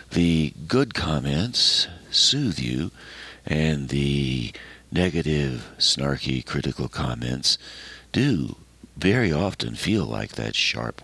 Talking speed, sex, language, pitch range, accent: 100 wpm, male, English, 65-90 Hz, American